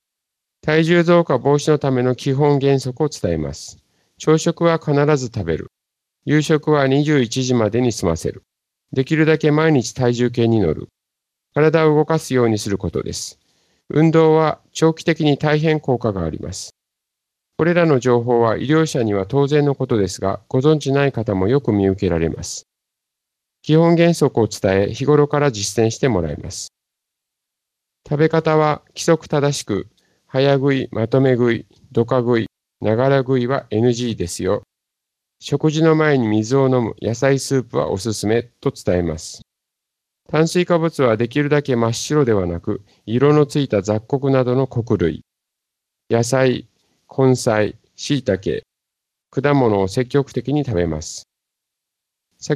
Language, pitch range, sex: Japanese, 110-150 Hz, male